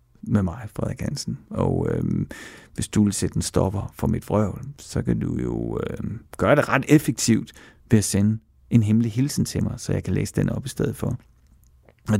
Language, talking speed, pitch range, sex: Danish, 205 wpm, 85-130 Hz, male